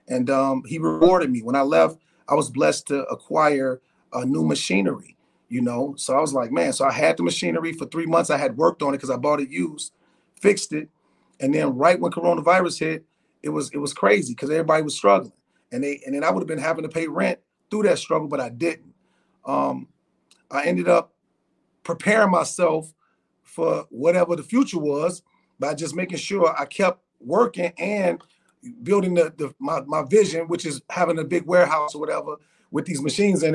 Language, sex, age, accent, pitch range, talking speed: English, male, 40-59, American, 145-175 Hz, 200 wpm